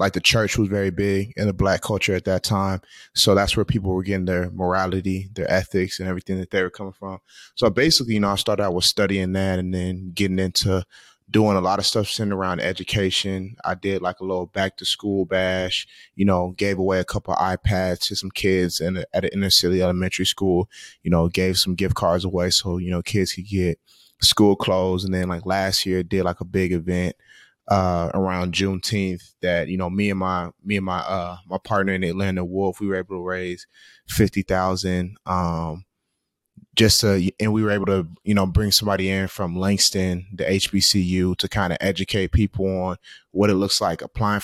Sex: male